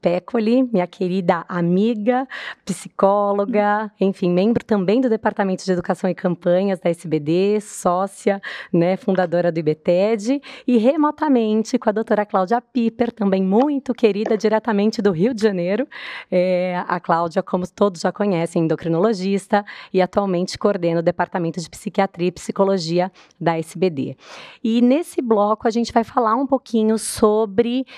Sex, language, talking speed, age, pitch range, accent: female, Portuguese, 140 wpm, 20-39, 185-235 Hz, Brazilian